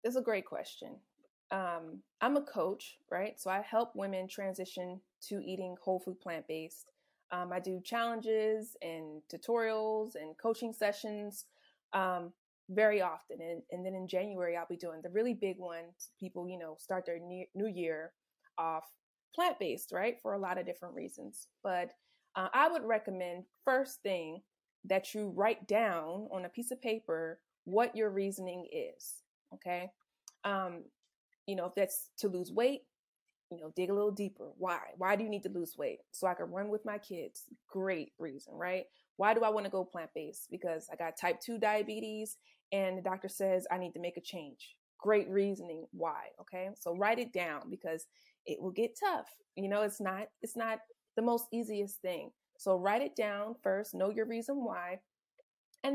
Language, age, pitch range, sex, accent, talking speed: English, 20-39, 180-220 Hz, female, American, 180 wpm